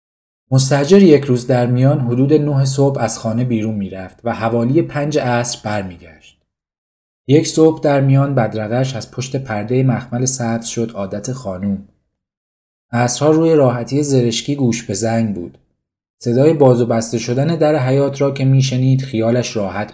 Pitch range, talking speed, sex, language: 110-135 Hz, 155 wpm, male, Persian